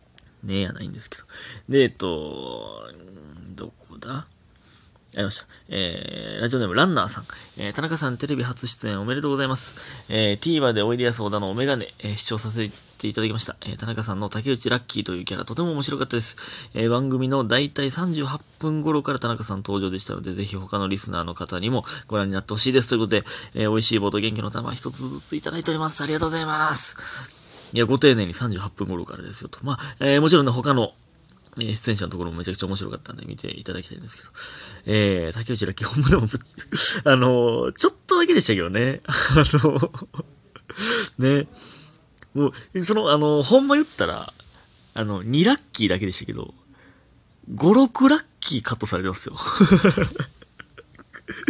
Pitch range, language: 105-150 Hz, Japanese